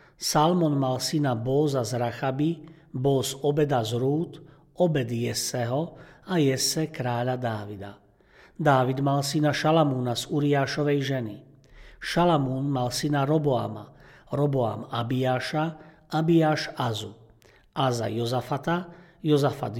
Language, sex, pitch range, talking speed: Slovak, male, 125-155 Hz, 105 wpm